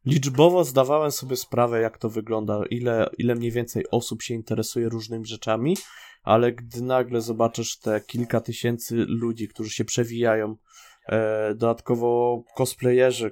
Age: 20-39